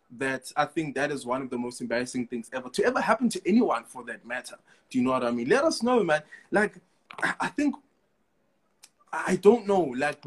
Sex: male